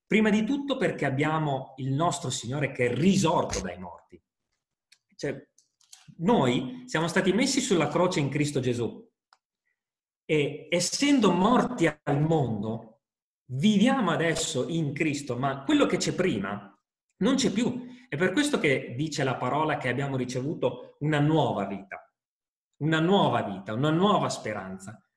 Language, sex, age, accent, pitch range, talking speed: Italian, male, 30-49, native, 125-185 Hz, 140 wpm